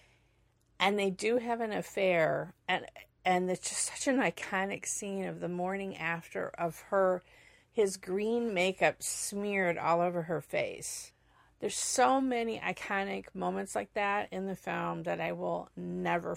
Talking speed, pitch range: 155 wpm, 175-220 Hz